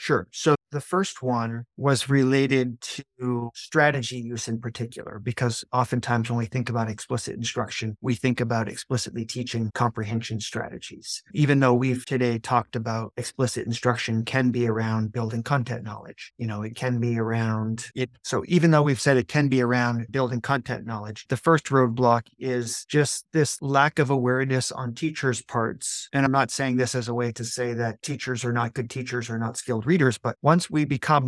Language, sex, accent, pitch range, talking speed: English, male, American, 115-135 Hz, 185 wpm